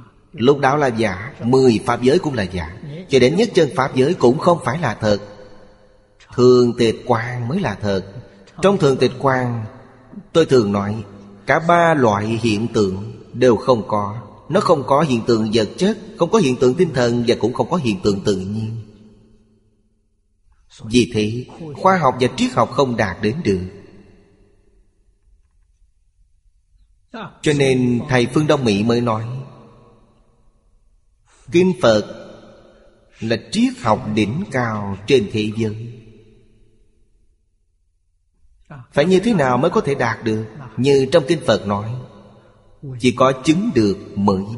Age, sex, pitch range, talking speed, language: 30-49, male, 105-135 Hz, 150 wpm, Vietnamese